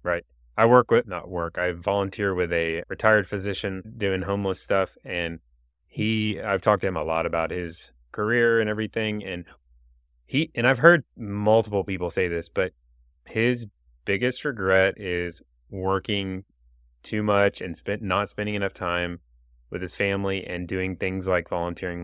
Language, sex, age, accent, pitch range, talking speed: English, male, 30-49, American, 85-105 Hz, 160 wpm